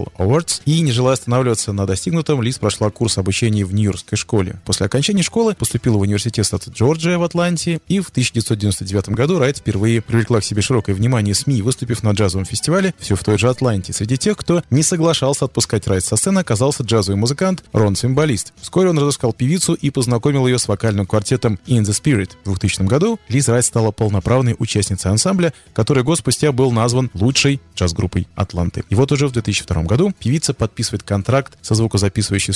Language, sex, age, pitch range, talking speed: Russian, male, 20-39, 100-135 Hz, 185 wpm